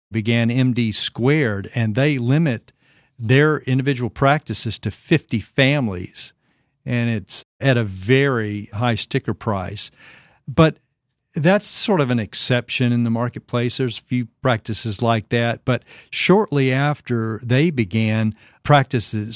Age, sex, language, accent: 50-69, male, English, American